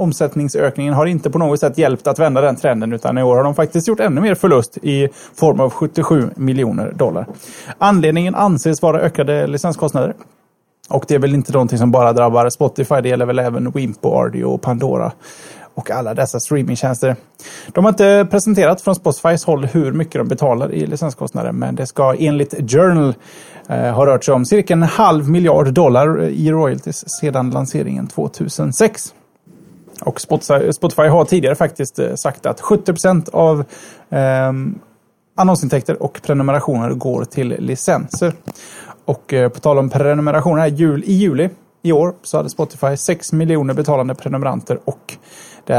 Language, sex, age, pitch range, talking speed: Swedish, male, 30-49, 130-170 Hz, 155 wpm